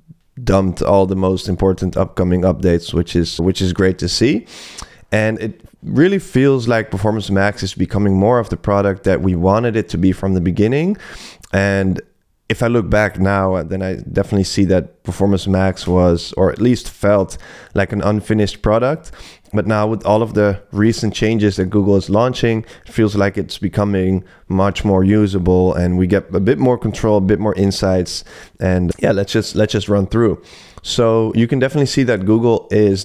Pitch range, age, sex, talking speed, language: 95-110 Hz, 20-39, male, 190 wpm, English